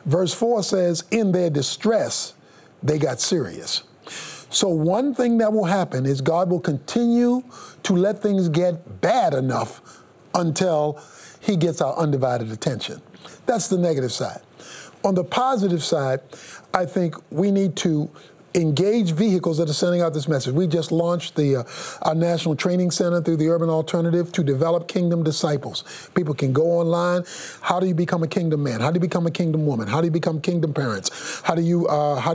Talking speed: 180 wpm